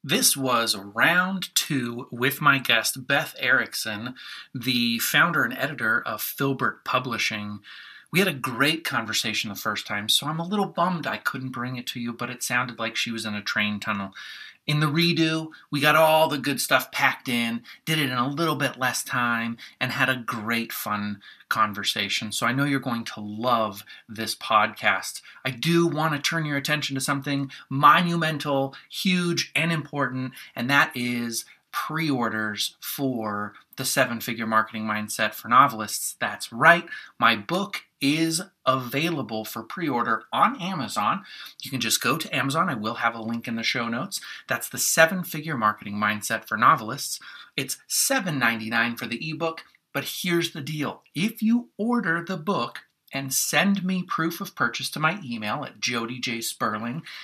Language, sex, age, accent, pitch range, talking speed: English, male, 30-49, American, 115-160 Hz, 170 wpm